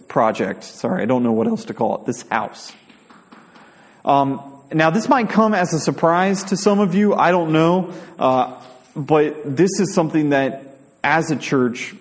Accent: American